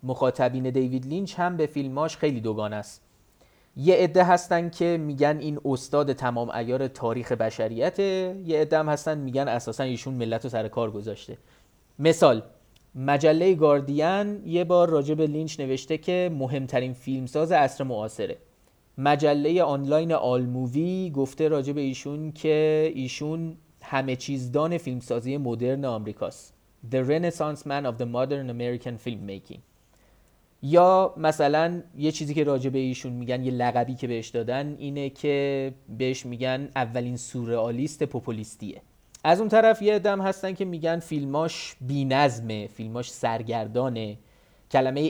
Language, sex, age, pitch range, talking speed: Persian, male, 30-49, 120-155 Hz, 130 wpm